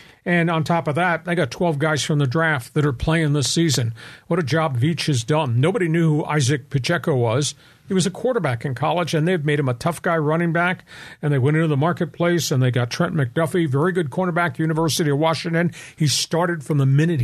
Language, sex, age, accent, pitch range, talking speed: English, male, 50-69, American, 145-180 Hz, 230 wpm